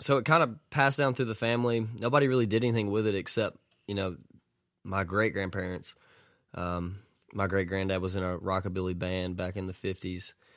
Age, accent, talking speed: 20-39, American, 195 wpm